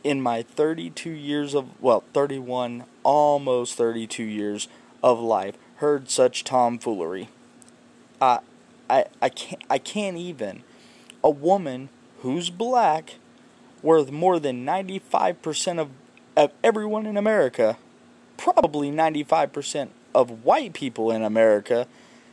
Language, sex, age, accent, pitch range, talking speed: English, male, 20-39, American, 140-230 Hz, 115 wpm